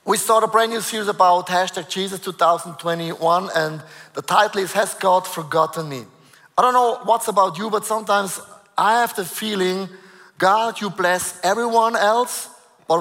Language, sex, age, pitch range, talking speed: English, male, 30-49, 185-230 Hz, 165 wpm